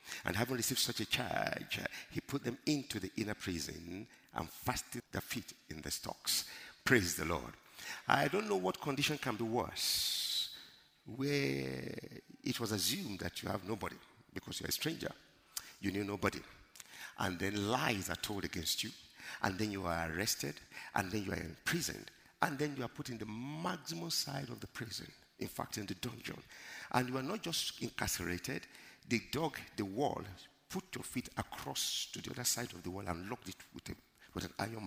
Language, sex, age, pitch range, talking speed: English, male, 50-69, 100-150 Hz, 185 wpm